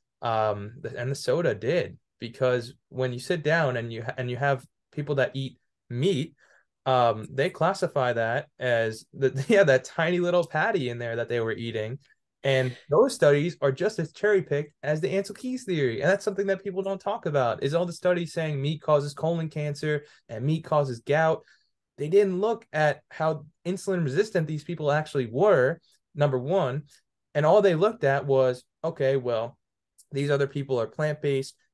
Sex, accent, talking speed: male, American, 185 wpm